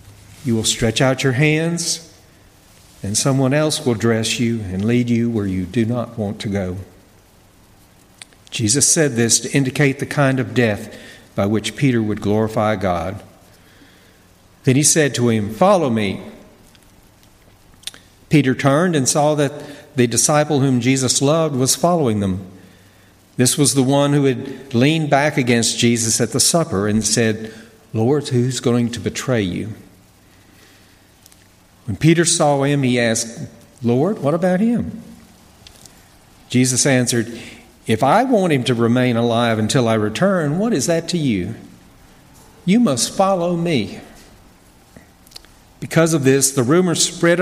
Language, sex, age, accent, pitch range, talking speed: English, male, 60-79, American, 110-145 Hz, 145 wpm